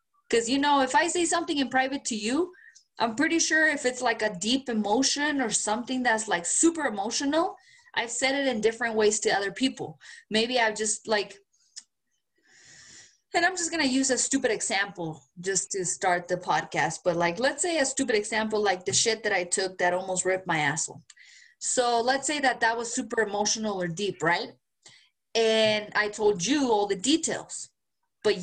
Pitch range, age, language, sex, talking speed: 195-280 Hz, 20-39, English, female, 190 wpm